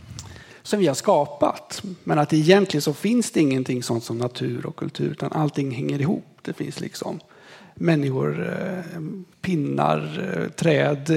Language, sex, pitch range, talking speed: Swedish, male, 145-180 Hz, 140 wpm